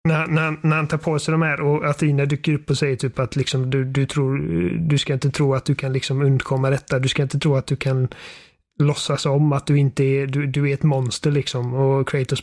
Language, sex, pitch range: Swedish, male, 135-155 Hz